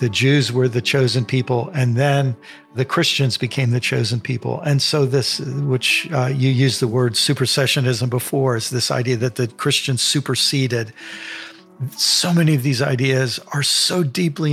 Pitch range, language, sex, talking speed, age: 125-145 Hz, English, male, 165 wpm, 50-69